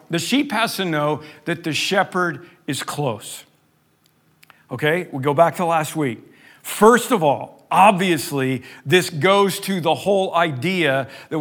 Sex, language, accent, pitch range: male, English, American, 145-180 Hz